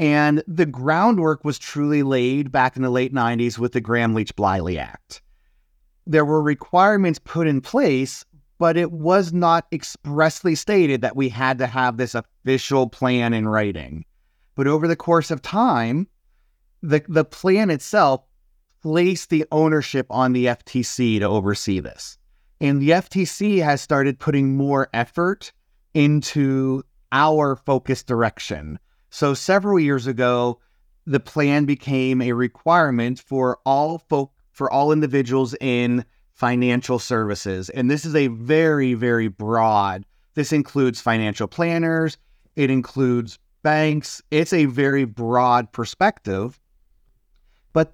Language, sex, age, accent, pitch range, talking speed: English, male, 30-49, American, 120-155 Hz, 135 wpm